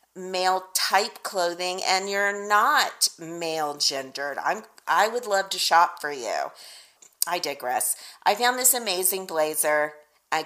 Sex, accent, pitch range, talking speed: female, American, 155-210 Hz, 120 wpm